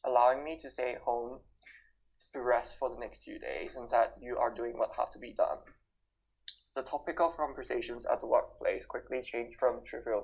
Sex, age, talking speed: male, 20-39, 195 wpm